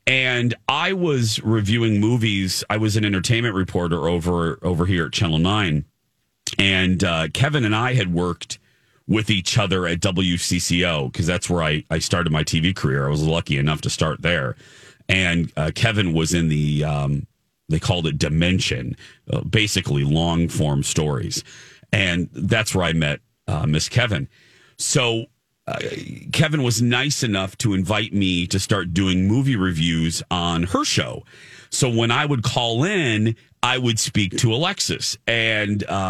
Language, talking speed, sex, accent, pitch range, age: English, 160 wpm, male, American, 90-120 Hz, 40-59